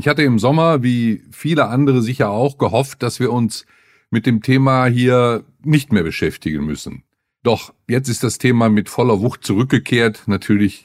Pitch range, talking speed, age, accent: 105-130 Hz, 170 wpm, 50-69, German